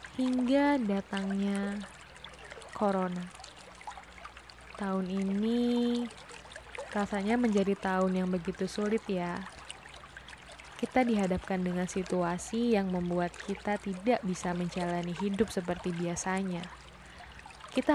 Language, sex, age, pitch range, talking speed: Indonesian, female, 20-39, 190-225 Hz, 85 wpm